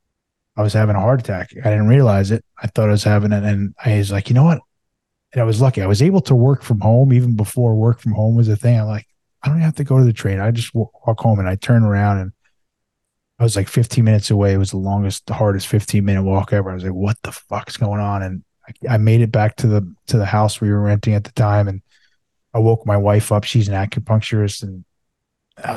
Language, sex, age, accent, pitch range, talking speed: English, male, 20-39, American, 100-115 Hz, 265 wpm